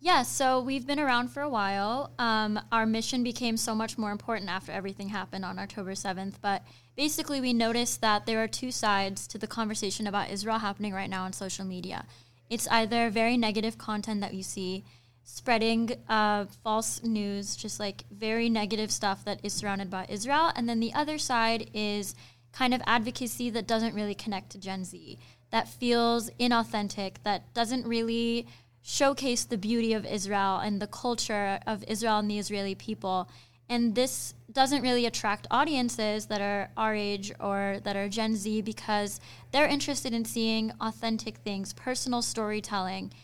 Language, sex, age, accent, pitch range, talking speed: English, female, 10-29, American, 200-235 Hz, 170 wpm